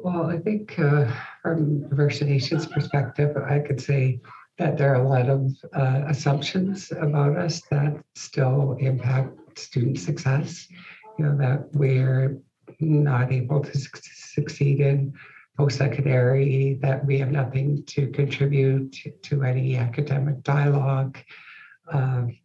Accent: American